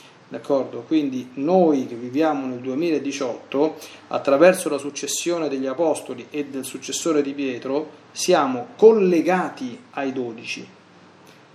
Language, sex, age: Italian, male, 40-59